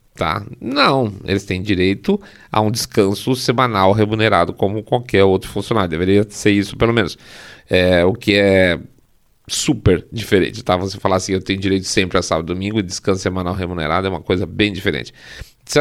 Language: Portuguese